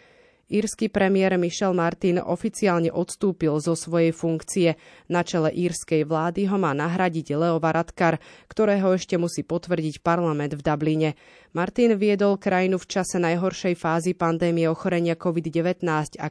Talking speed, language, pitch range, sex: 135 wpm, Slovak, 160-185 Hz, female